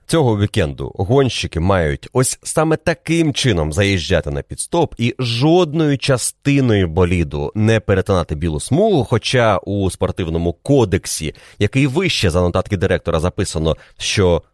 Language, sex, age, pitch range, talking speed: Ukrainian, male, 30-49, 90-130 Hz, 125 wpm